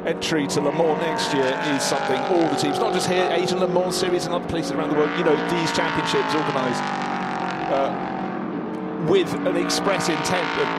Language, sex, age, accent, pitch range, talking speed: English, male, 40-59, British, 135-180 Hz, 195 wpm